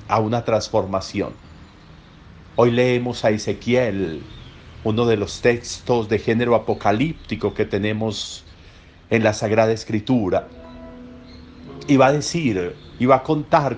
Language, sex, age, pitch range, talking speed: Spanish, male, 50-69, 110-145 Hz, 120 wpm